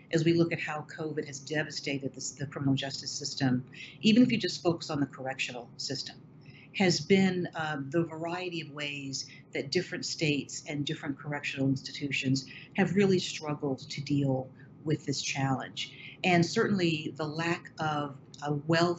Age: 50-69